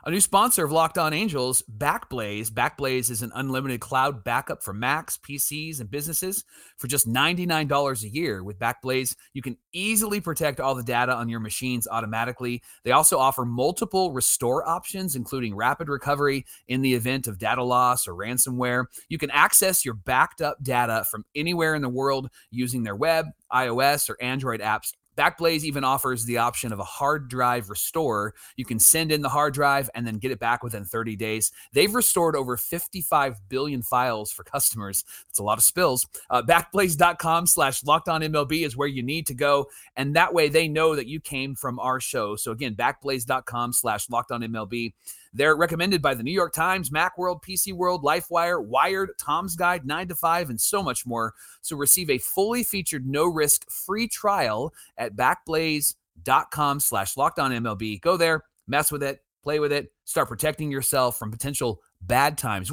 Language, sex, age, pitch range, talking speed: English, male, 30-49, 120-160 Hz, 180 wpm